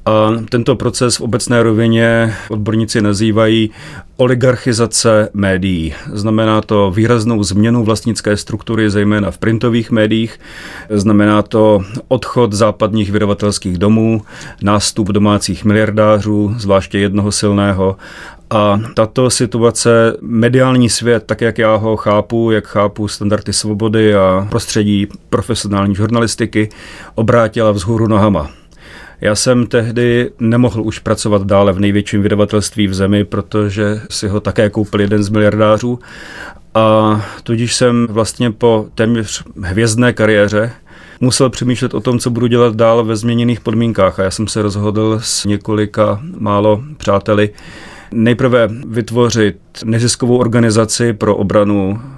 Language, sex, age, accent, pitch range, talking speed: Czech, male, 40-59, native, 105-115 Hz, 125 wpm